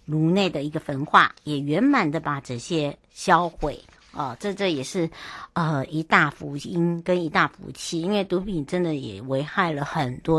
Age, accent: 60-79, American